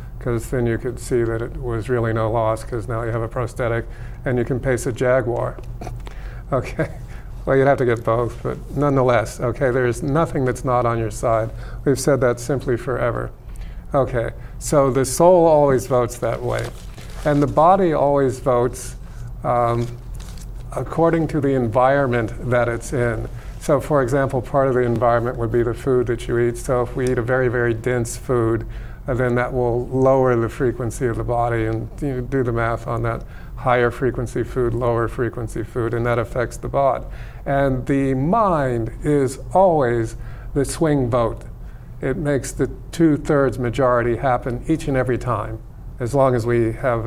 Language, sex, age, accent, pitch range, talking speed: English, male, 50-69, American, 115-130 Hz, 180 wpm